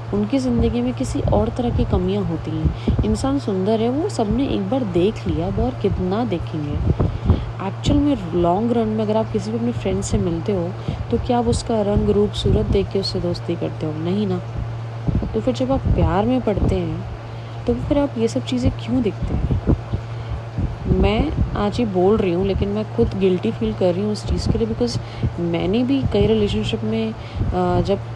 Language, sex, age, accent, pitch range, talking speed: Hindi, female, 30-49, native, 110-165 Hz, 200 wpm